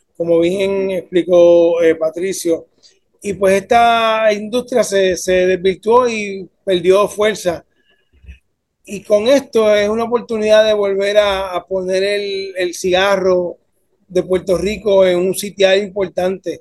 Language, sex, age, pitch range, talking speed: English, male, 30-49, 180-215 Hz, 130 wpm